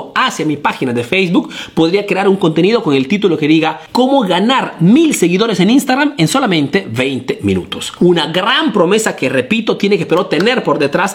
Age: 40-59